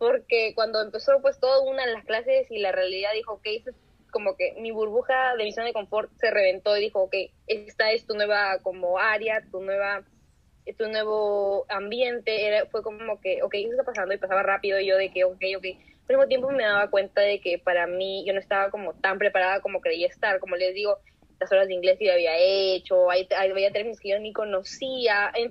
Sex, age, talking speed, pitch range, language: female, 10-29, 215 wpm, 195-235 Hz, English